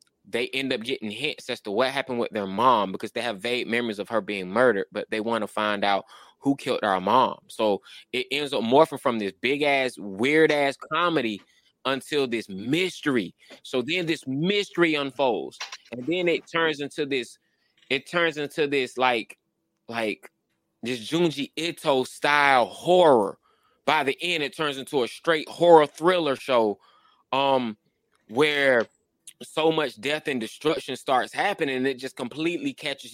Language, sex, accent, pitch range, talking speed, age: English, male, American, 120-155 Hz, 165 wpm, 20-39